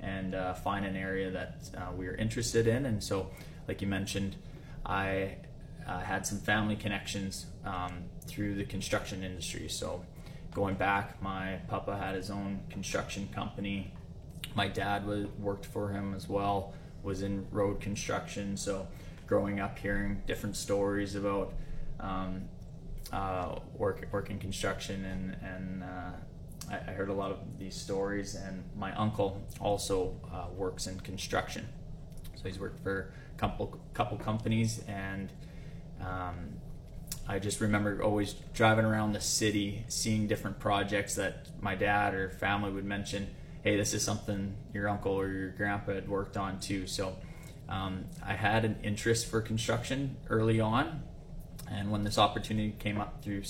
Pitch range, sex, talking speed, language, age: 95-105 Hz, male, 155 wpm, English, 20-39